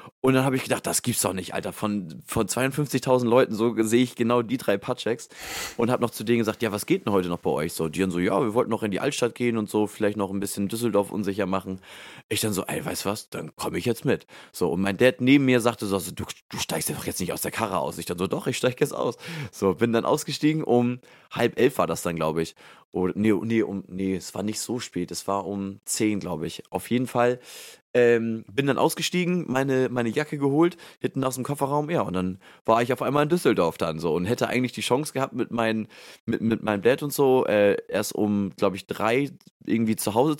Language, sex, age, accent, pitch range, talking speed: German, male, 30-49, German, 100-130 Hz, 255 wpm